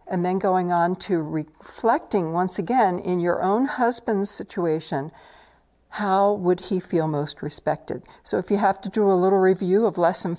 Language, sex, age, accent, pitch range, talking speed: English, female, 60-79, American, 160-195 Hz, 175 wpm